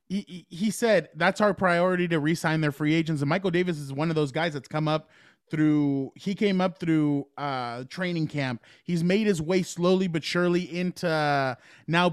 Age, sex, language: 20-39, male, English